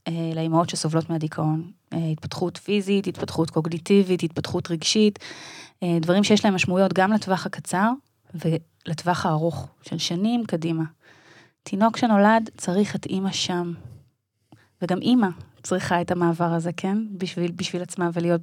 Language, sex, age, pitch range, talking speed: Hebrew, female, 20-39, 170-210 Hz, 125 wpm